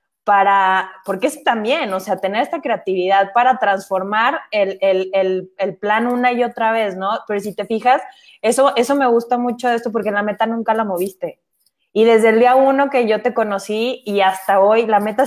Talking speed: 205 wpm